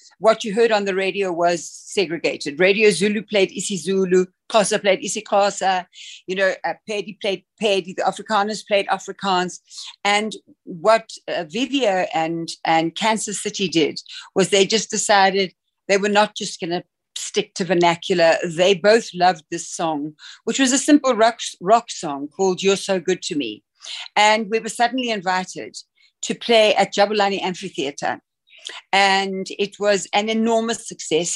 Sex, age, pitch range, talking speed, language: female, 60-79, 180-210 Hz, 160 wpm, English